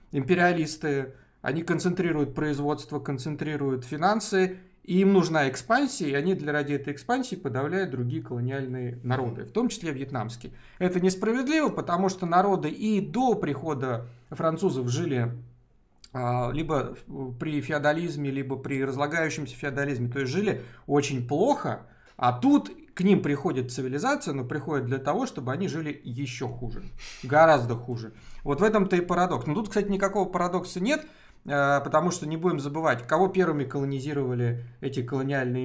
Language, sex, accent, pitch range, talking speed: Russian, male, native, 130-185 Hz, 140 wpm